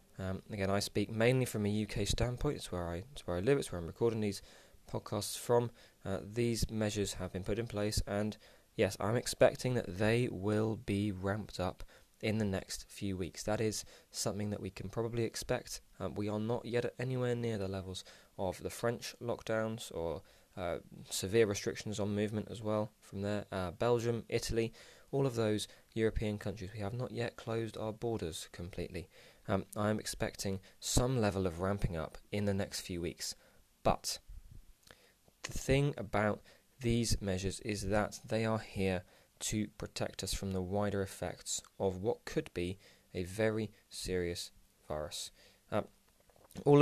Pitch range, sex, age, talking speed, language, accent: 95-115 Hz, male, 20-39, 170 wpm, English, British